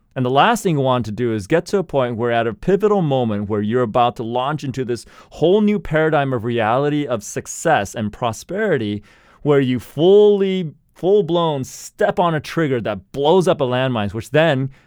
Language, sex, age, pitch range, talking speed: English, male, 30-49, 115-170 Hz, 200 wpm